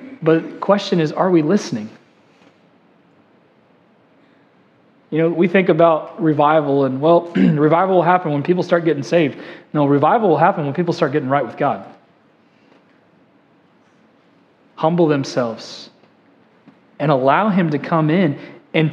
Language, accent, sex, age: English, American, male, 30-49